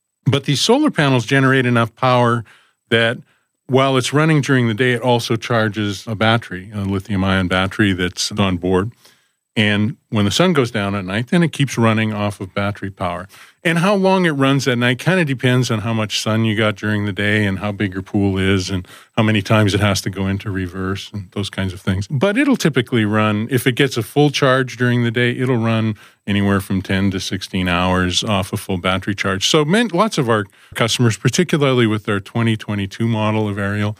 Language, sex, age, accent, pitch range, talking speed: English, male, 40-59, American, 95-120 Hz, 210 wpm